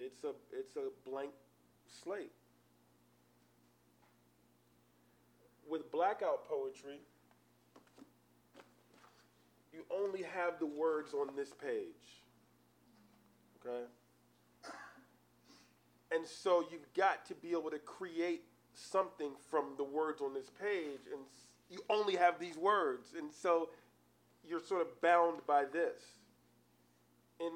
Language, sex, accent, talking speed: English, male, American, 105 wpm